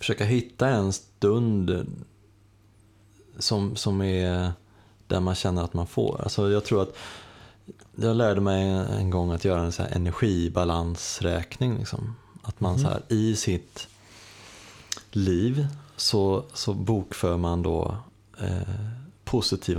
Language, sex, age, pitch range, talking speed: English, male, 20-39, 90-110 Hz, 130 wpm